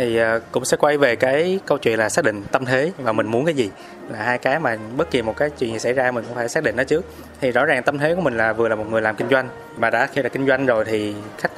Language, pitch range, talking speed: Vietnamese, 115-145 Hz, 315 wpm